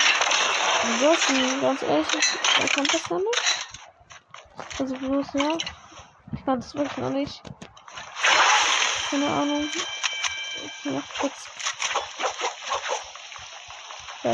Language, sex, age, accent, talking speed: German, female, 20-39, German, 90 wpm